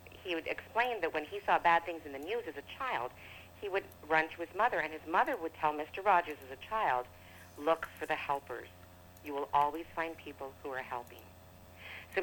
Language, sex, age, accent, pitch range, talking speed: English, female, 50-69, American, 135-185 Hz, 215 wpm